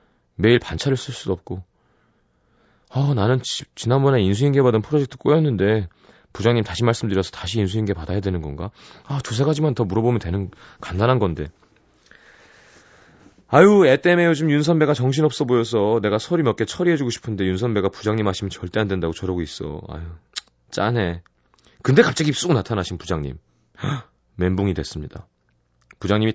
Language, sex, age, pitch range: Korean, male, 30-49, 90-130 Hz